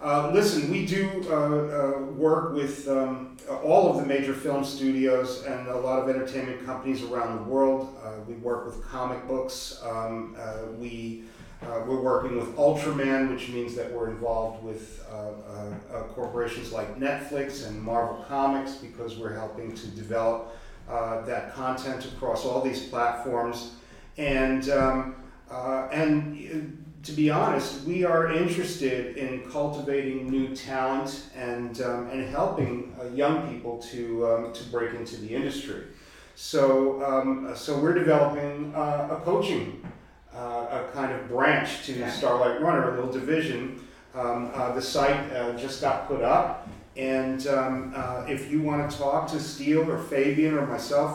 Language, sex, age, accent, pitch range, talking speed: English, male, 40-59, American, 120-145 Hz, 160 wpm